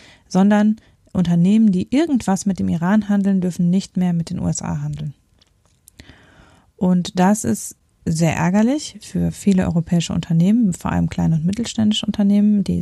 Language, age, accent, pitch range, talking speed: German, 30-49, German, 175-205 Hz, 145 wpm